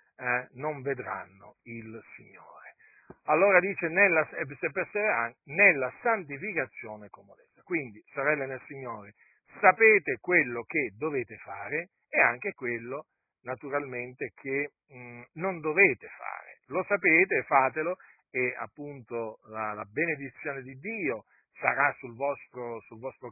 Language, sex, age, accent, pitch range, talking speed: Italian, male, 50-69, native, 115-150 Hz, 105 wpm